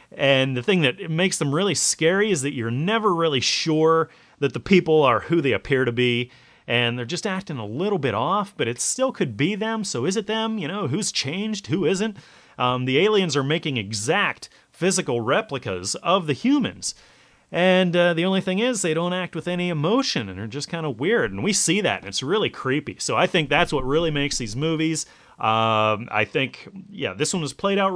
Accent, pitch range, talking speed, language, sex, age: American, 125-185 Hz, 220 wpm, English, male, 30-49